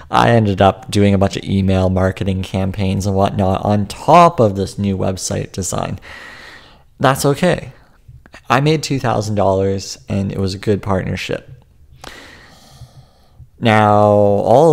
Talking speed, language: 130 wpm, English